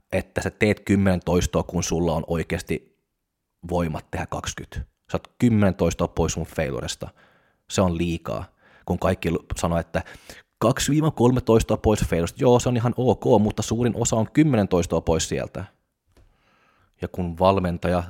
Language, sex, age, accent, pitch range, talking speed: Finnish, male, 20-39, native, 80-95 Hz, 150 wpm